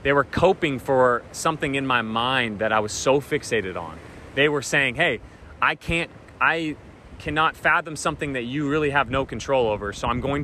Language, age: English, 30-49